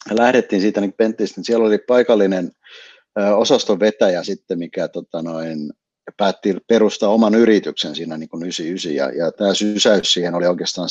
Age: 60-79